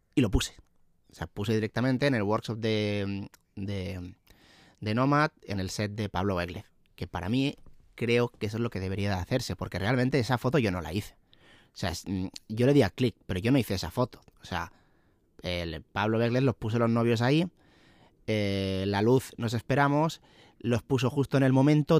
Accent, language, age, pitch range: Spanish, Spanish, 30-49, 100-125 Hz